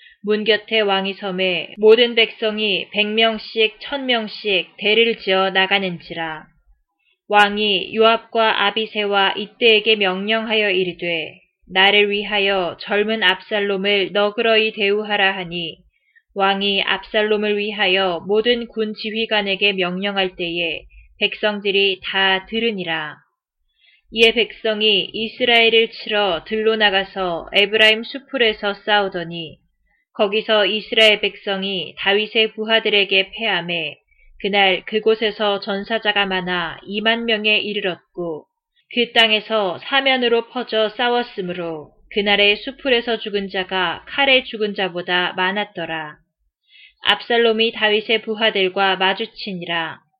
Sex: female